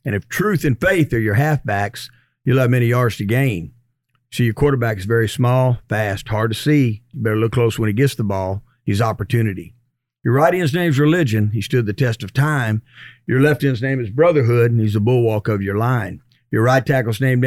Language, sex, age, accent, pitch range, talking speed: English, male, 50-69, American, 110-135 Hz, 220 wpm